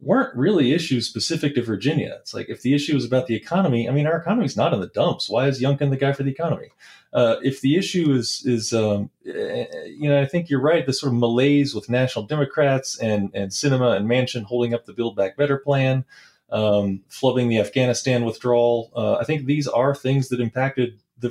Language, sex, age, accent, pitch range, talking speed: English, male, 30-49, American, 120-150 Hz, 215 wpm